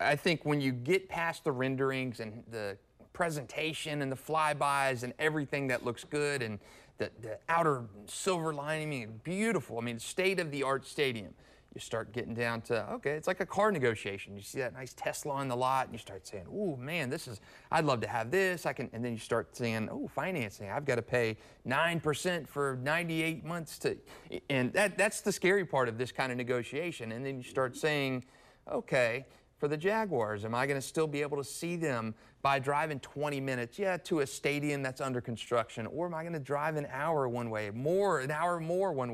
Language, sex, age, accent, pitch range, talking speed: English, male, 30-49, American, 120-155 Hz, 215 wpm